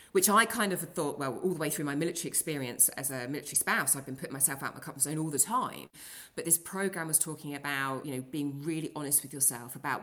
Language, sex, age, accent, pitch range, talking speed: English, female, 30-49, British, 130-160 Hz, 255 wpm